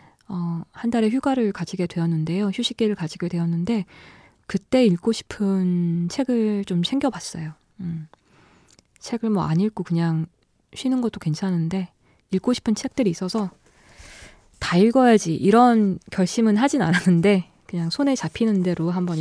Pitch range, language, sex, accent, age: 165-215 Hz, Korean, female, native, 20-39